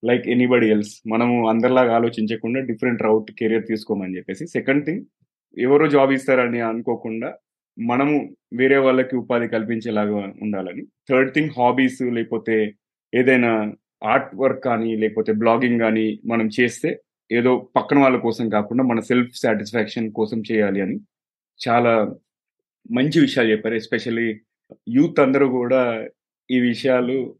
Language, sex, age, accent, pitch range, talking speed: Telugu, male, 30-49, native, 115-135 Hz, 125 wpm